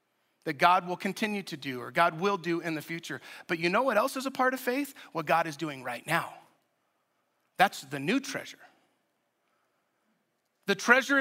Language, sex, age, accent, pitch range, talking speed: English, male, 40-59, American, 185-240 Hz, 185 wpm